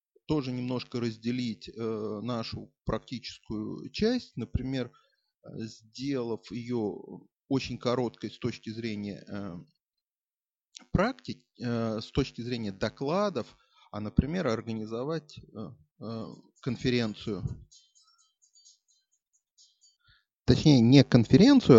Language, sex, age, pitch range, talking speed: Russian, male, 30-49, 110-150 Hz, 85 wpm